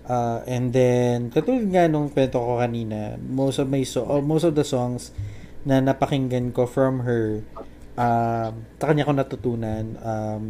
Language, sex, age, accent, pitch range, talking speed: Filipino, male, 20-39, native, 115-140 Hz, 160 wpm